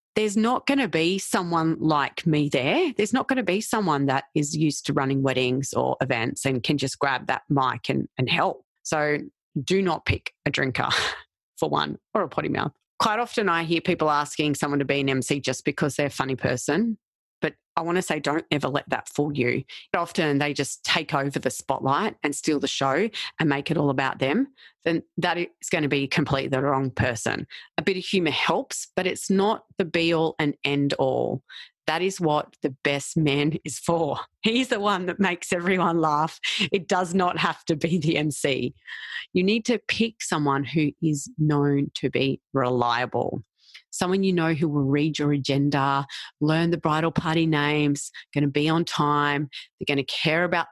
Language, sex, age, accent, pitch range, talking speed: English, female, 30-49, Australian, 145-180 Hz, 200 wpm